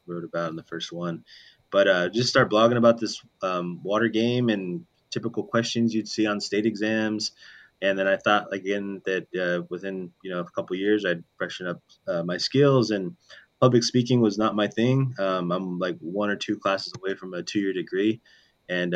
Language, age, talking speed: English, 20-39, 205 wpm